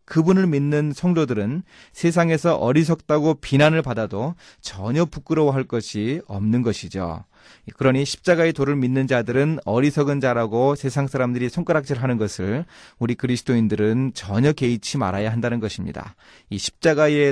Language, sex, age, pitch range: Korean, male, 30-49, 110-150 Hz